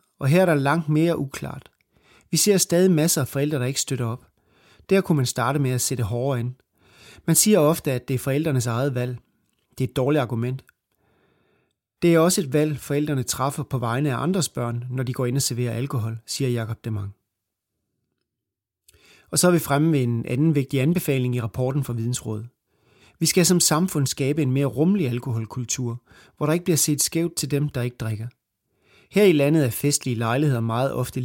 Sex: male